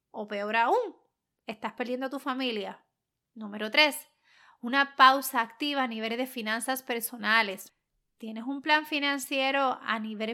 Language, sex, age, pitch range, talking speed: Spanish, female, 30-49, 235-285 Hz, 140 wpm